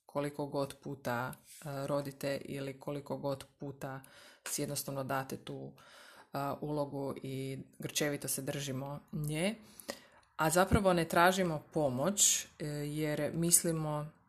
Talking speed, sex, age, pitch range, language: 100 wpm, female, 20-39, 140-185 Hz, Croatian